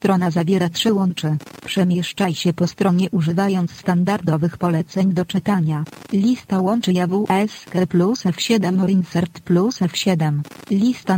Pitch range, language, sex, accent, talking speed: 175-200 Hz, Polish, female, native, 130 wpm